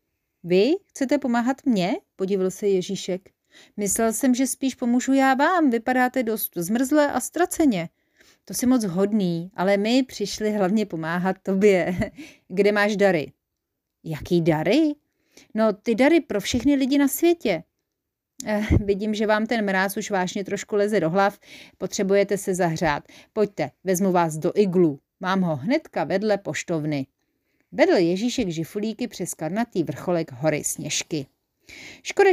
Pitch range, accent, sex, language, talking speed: 175-255 Hz, native, female, Czech, 140 wpm